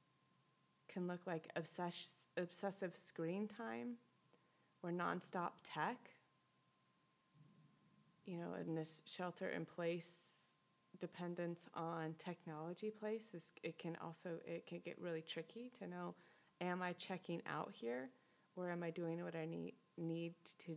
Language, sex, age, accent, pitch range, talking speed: English, female, 20-39, American, 170-210 Hz, 125 wpm